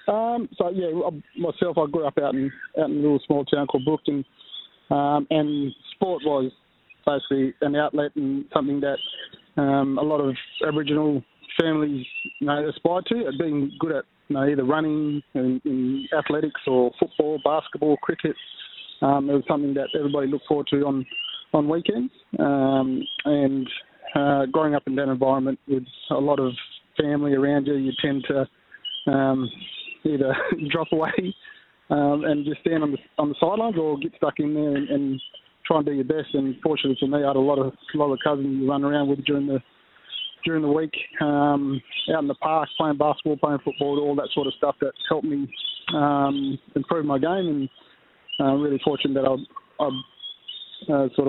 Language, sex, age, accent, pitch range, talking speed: English, male, 20-39, Australian, 135-155 Hz, 185 wpm